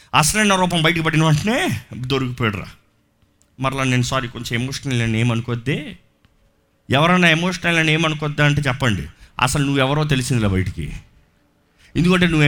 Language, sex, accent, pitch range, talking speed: Telugu, male, native, 125-195 Hz, 125 wpm